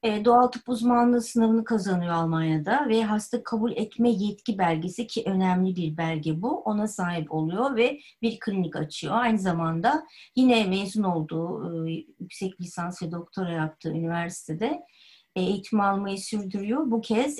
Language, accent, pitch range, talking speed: Turkish, native, 170-225 Hz, 150 wpm